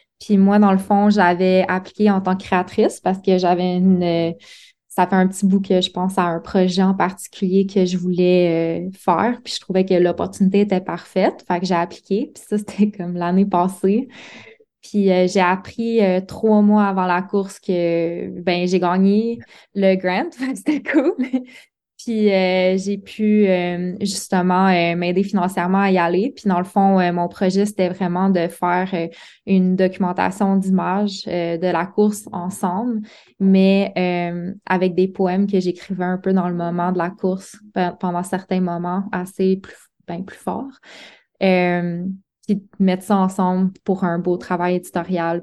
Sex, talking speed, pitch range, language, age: female, 180 wpm, 180-200 Hz, French, 20-39